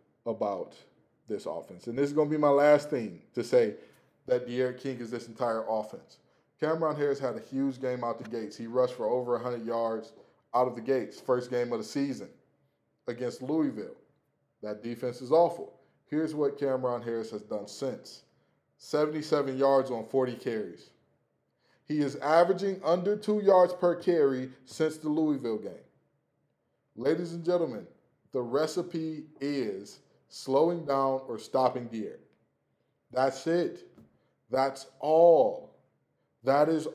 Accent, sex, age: American, male, 20-39